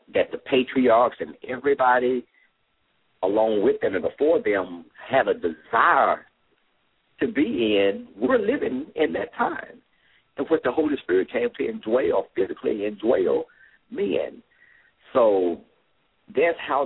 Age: 50-69